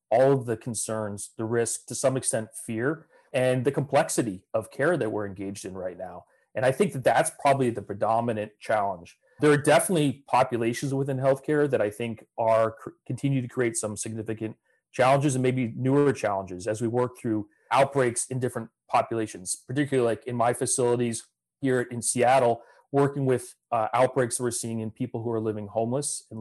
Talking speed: 180 wpm